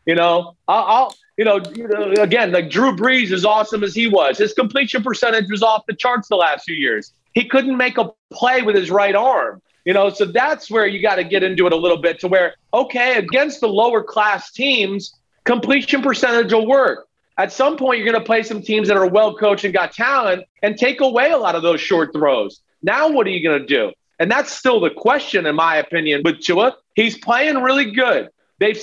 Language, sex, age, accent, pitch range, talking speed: English, male, 40-59, American, 190-250 Hz, 220 wpm